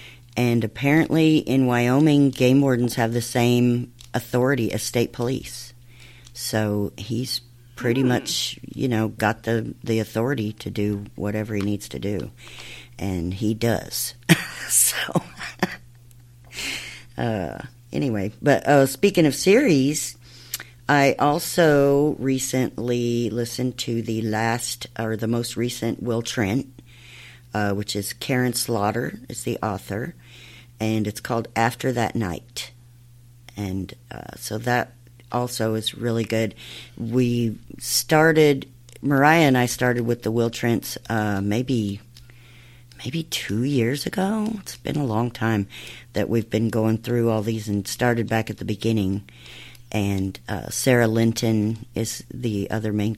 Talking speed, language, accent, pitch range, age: 135 wpm, English, American, 110-125 Hz, 50-69